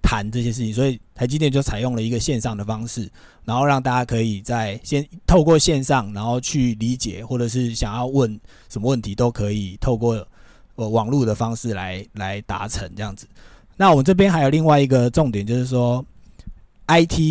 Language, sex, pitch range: Chinese, male, 110-140 Hz